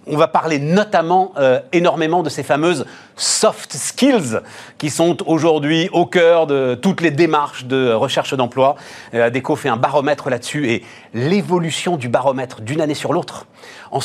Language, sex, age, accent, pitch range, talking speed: French, male, 40-59, French, 120-155 Hz, 170 wpm